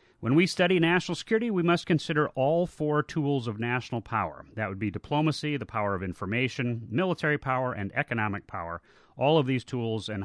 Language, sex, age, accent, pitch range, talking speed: English, male, 40-59, American, 120-165 Hz, 185 wpm